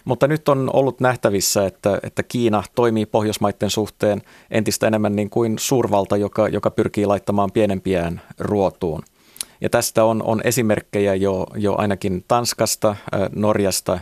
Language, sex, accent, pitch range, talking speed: Finnish, male, native, 100-110 Hz, 135 wpm